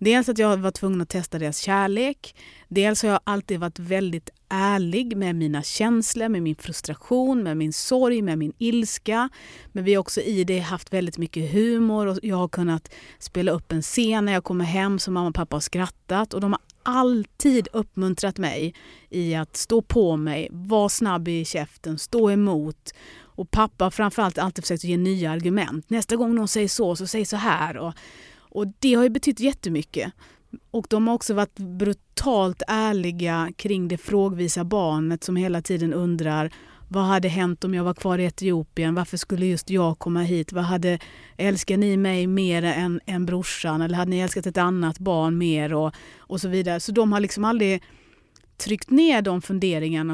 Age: 30-49